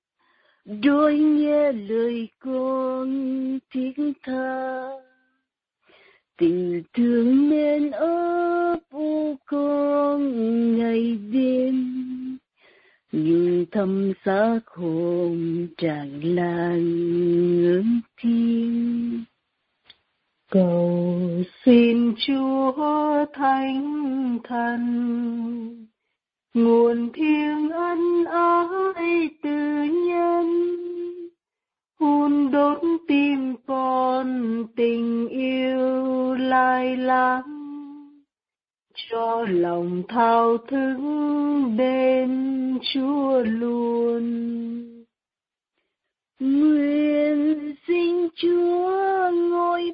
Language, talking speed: Vietnamese, 60 wpm